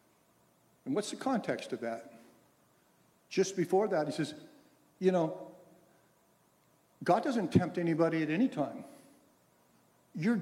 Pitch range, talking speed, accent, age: 165-245 Hz, 120 wpm, American, 60-79